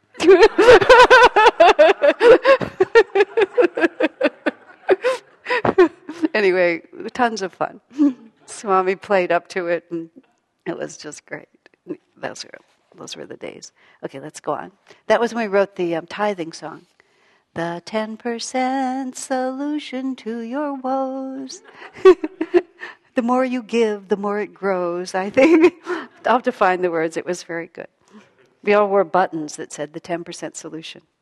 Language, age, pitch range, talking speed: English, 60-79, 170-270 Hz, 125 wpm